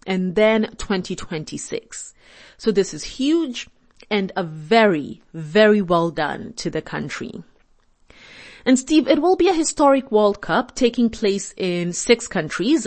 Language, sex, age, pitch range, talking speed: English, female, 30-49, 200-275 Hz, 140 wpm